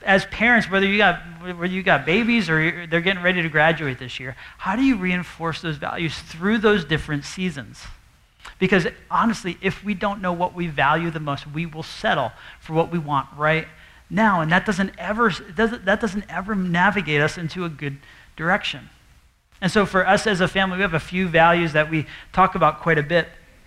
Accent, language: American, English